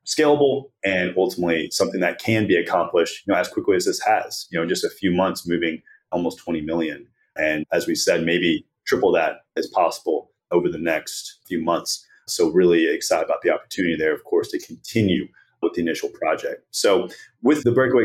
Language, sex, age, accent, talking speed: English, male, 30-49, American, 195 wpm